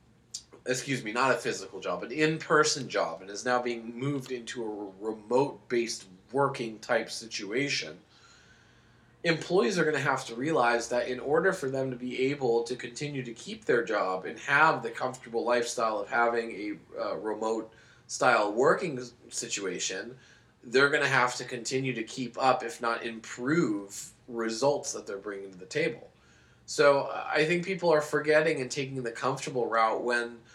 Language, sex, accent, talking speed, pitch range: English, male, American, 165 wpm, 115-135 Hz